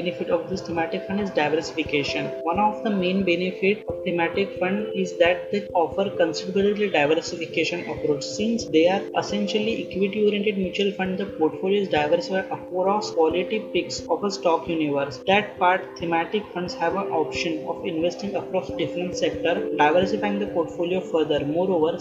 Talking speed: 155 wpm